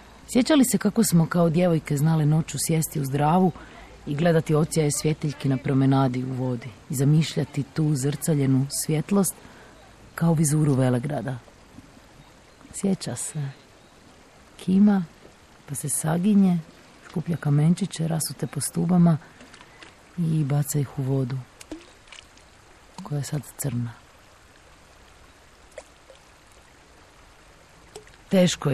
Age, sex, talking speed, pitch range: 40-59, female, 100 wpm, 135-170 Hz